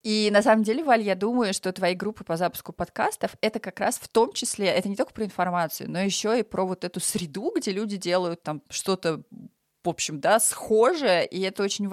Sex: female